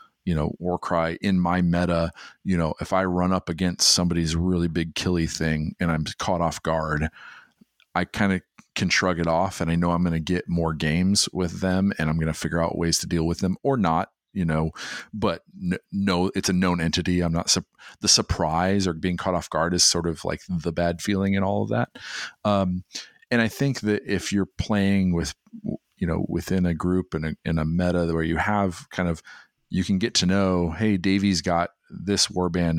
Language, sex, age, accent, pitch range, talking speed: English, male, 40-59, American, 80-95 Hz, 210 wpm